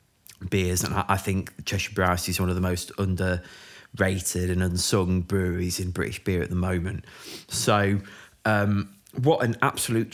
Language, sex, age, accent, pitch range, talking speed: English, male, 20-39, British, 95-115 Hz, 155 wpm